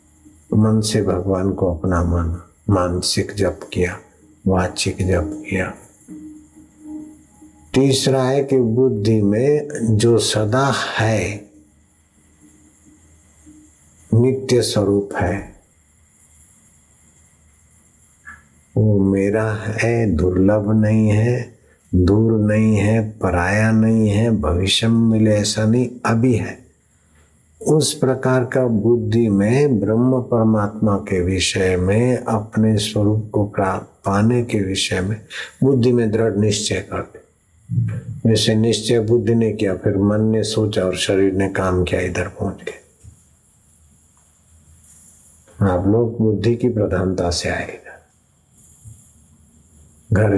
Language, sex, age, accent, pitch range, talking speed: Hindi, male, 60-79, native, 90-110 Hz, 105 wpm